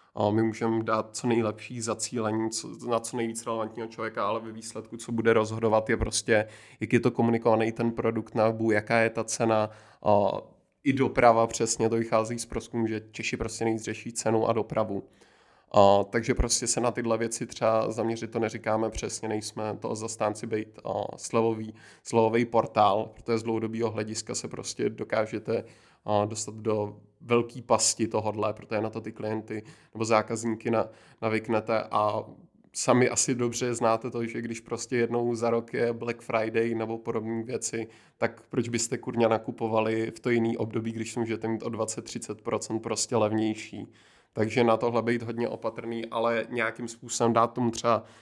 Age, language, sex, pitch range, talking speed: 20-39, Czech, male, 110-115 Hz, 160 wpm